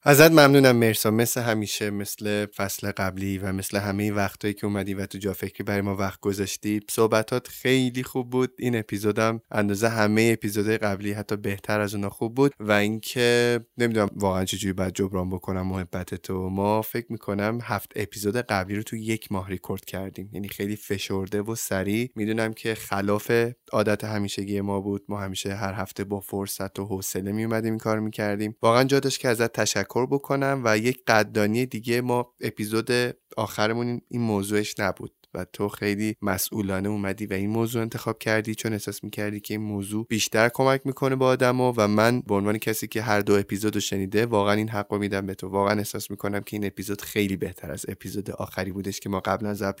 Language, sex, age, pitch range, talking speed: Persian, male, 20-39, 100-110 Hz, 190 wpm